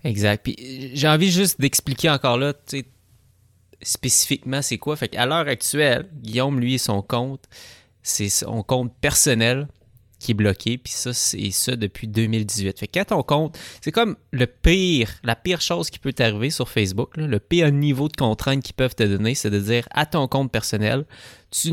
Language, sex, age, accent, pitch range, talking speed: English, male, 20-39, Canadian, 105-135 Hz, 185 wpm